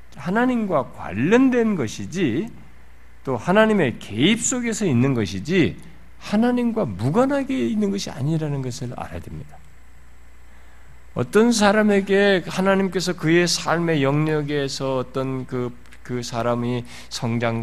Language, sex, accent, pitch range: Korean, male, native, 100-165 Hz